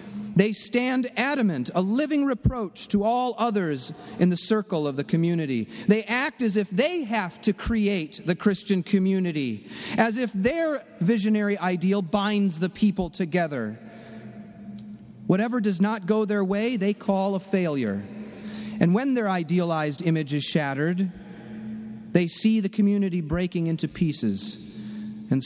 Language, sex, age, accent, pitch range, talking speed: English, male, 40-59, American, 170-220 Hz, 140 wpm